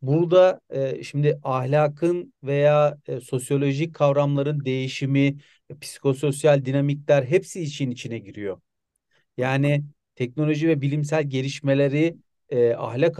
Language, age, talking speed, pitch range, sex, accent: Turkish, 40-59, 85 wpm, 140-170 Hz, male, native